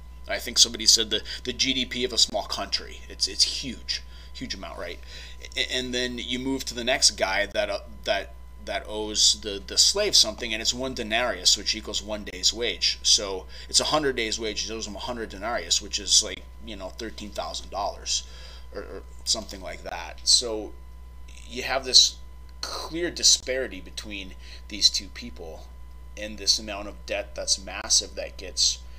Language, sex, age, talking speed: English, male, 30-49, 175 wpm